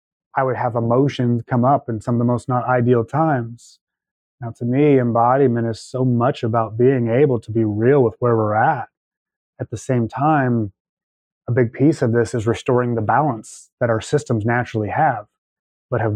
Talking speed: 190 wpm